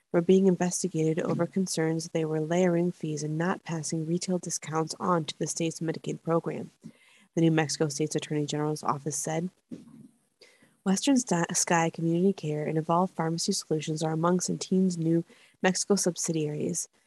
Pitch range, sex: 155-185 Hz, female